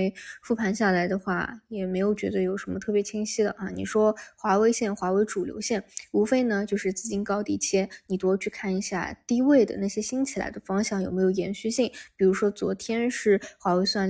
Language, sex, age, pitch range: Chinese, female, 20-39, 190-220 Hz